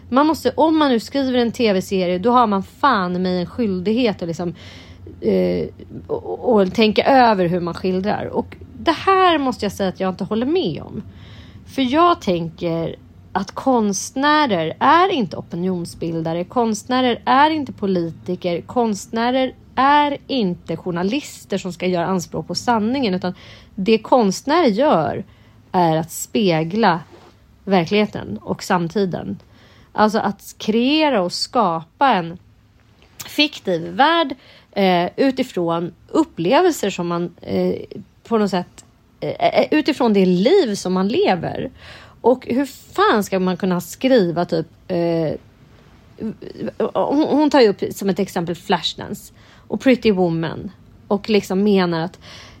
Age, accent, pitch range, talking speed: 30-49, native, 175-250 Hz, 135 wpm